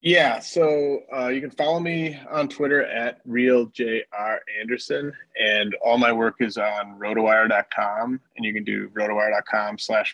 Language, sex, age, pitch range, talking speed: English, male, 20-39, 105-120 Hz, 140 wpm